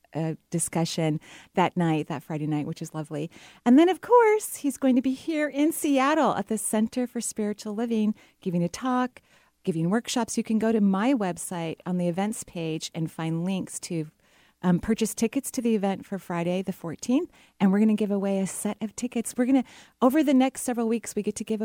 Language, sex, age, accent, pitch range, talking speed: English, female, 30-49, American, 175-240 Hz, 215 wpm